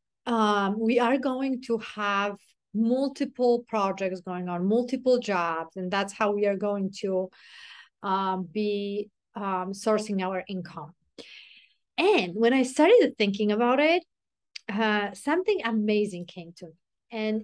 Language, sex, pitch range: English, female, 200-245 Hz